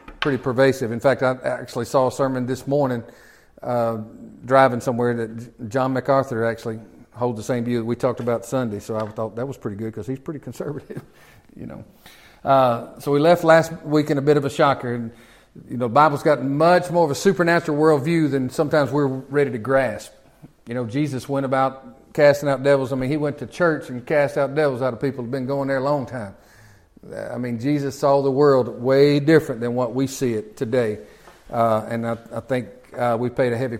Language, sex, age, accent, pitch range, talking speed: English, male, 40-59, American, 120-150 Hz, 215 wpm